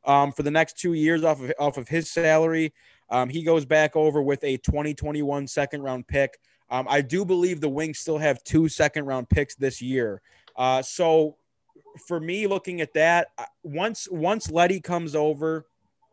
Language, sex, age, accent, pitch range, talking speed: English, male, 20-39, American, 130-160 Hz, 180 wpm